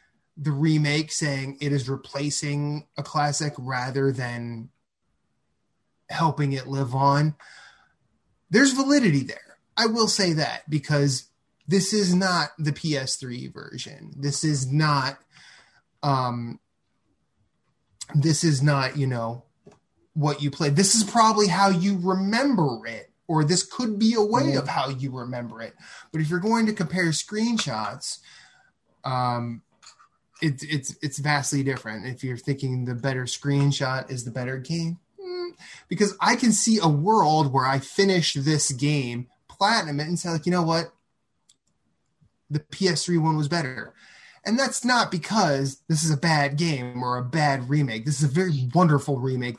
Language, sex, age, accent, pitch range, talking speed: English, male, 20-39, American, 135-170 Hz, 150 wpm